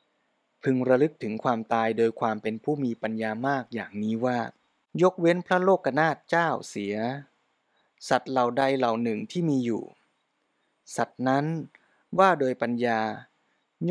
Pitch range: 115-145 Hz